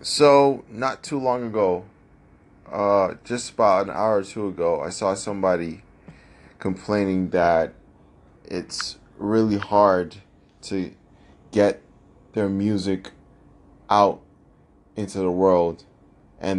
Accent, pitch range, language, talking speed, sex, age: American, 90-105 Hz, English, 110 wpm, male, 20-39